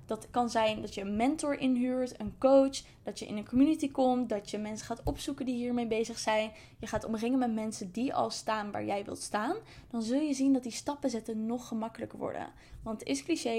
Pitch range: 220-255 Hz